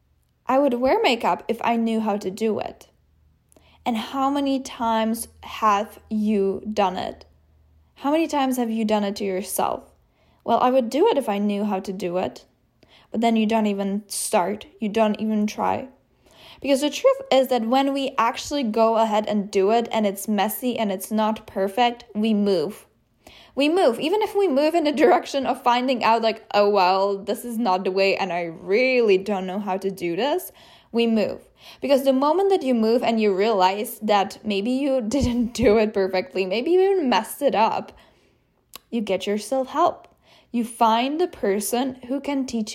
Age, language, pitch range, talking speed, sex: 10-29, English, 205-255 Hz, 190 wpm, female